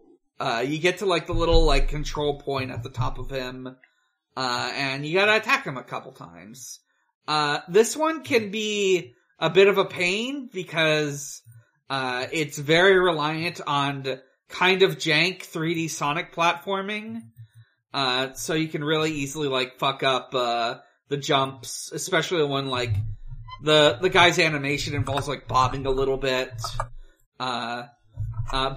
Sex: male